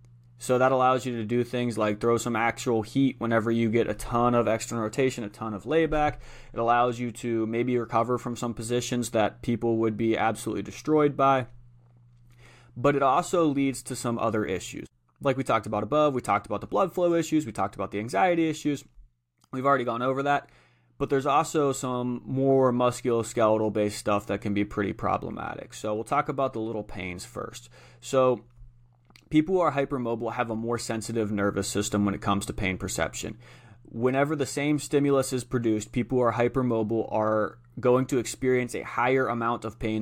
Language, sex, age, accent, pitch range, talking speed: English, male, 30-49, American, 110-130 Hz, 190 wpm